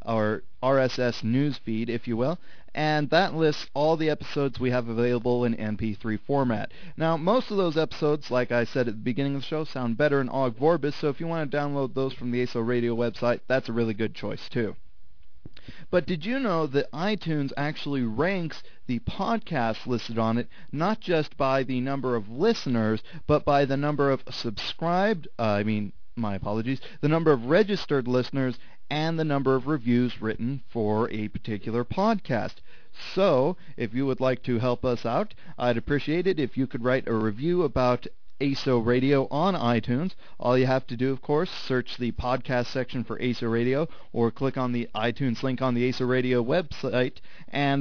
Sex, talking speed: male, 190 wpm